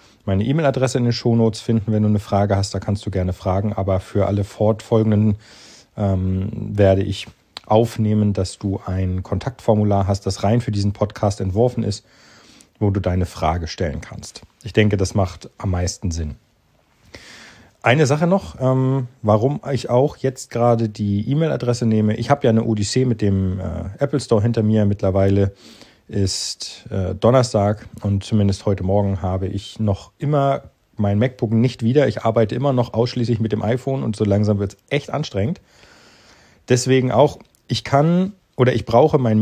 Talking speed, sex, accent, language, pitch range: 170 wpm, male, German, German, 100-120 Hz